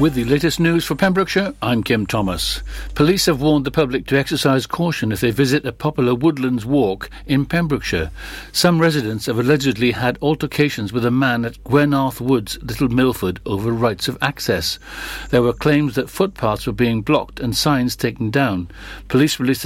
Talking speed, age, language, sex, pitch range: 175 wpm, 60-79, English, male, 120-150 Hz